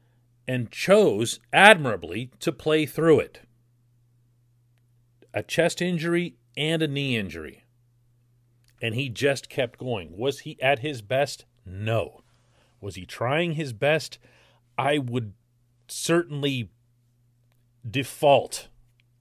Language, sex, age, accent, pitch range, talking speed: English, male, 40-59, American, 120-145 Hz, 105 wpm